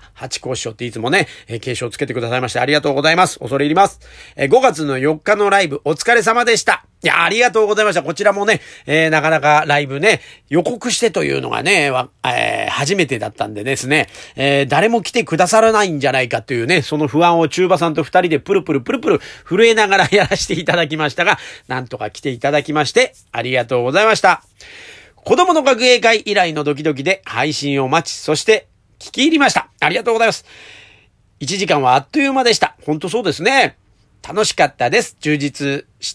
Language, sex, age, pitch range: Japanese, male, 40-59, 140-205 Hz